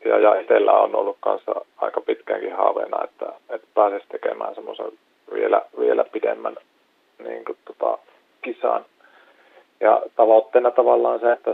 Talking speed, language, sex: 130 wpm, Finnish, male